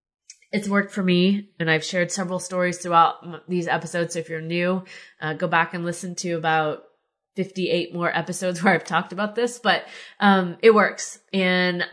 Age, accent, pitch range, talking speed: 20-39, American, 165-200 Hz, 180 wpm